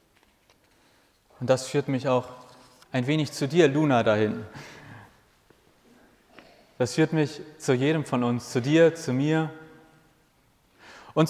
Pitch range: 125-155 Hz